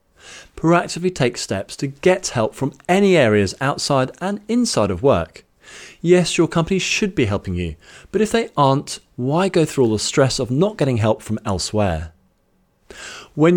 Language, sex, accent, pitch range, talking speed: English, male, British, 110-175 Hz, 170 wpm